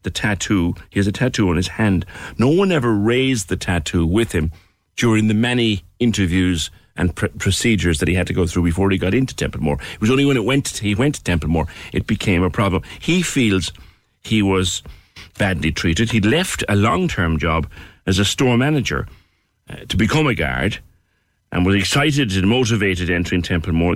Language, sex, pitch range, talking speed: English, male, 90-120 Hz, 195 wpm